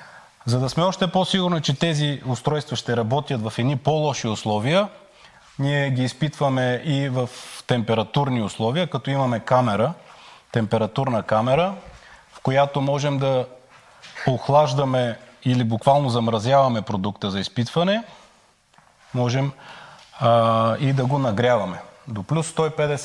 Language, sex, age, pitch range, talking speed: Bulgarian, male, 30-49, 120-160 Hz, 115 wpm